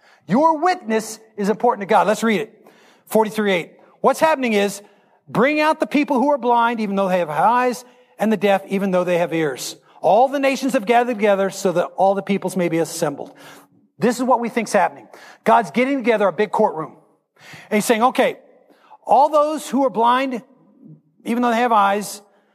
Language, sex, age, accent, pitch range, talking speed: English, male, 40-59, American, 210-275 Hz, 195 wpm